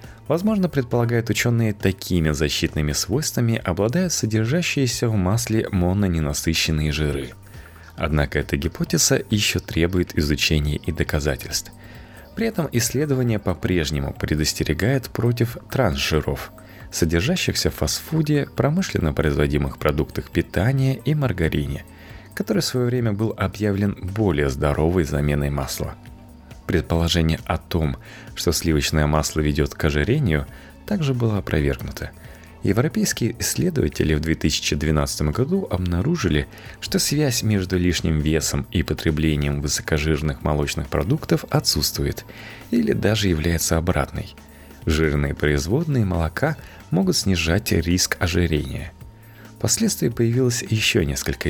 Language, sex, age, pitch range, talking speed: Russian, male, 30-49, 75-115 Hz, 105 wpm